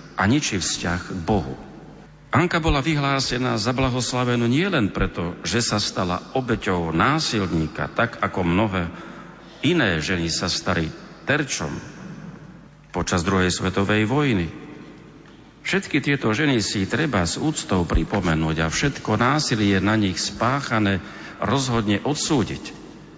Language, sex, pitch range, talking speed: Slovak, male, 95-130 Hz, 120 wpm